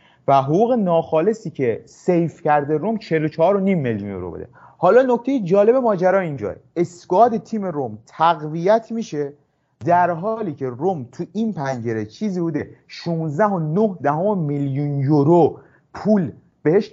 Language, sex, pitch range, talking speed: Persian, male, 140-215 Hz, 125 wpm